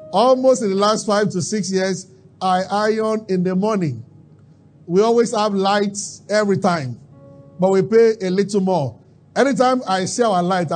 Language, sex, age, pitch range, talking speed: English, male, 50-69, 150-195 Hz, 165 wpm